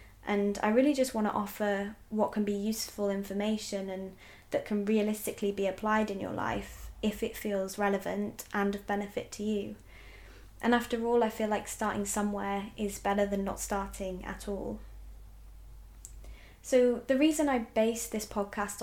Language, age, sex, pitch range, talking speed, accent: English, 20-39, female, 195-220 Hz, 165 wpm, British